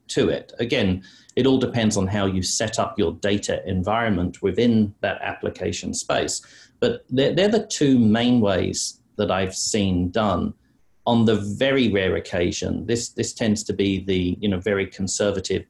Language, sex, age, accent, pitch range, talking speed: English, male, 40-59, British, 95-115 Hz, 170 wpm